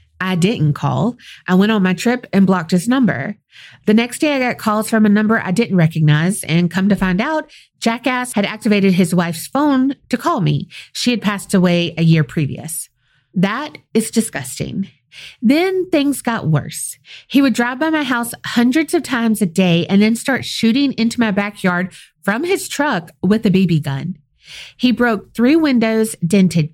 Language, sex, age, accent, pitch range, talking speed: English, female, 30-49, American, 180-250 Hz, 185 wpm